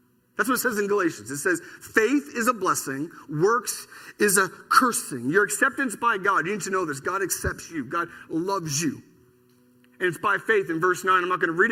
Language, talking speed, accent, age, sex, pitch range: English, 220 wpm, American, 40-59, male, 180-240 Hz